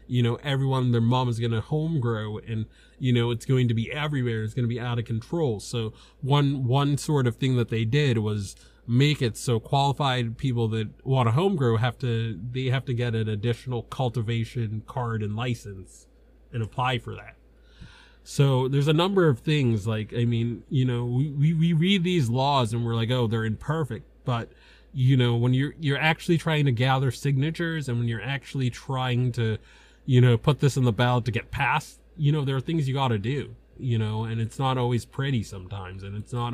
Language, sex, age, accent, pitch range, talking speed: English, male, 30-49, American, 115-135 Hz, 215 wpm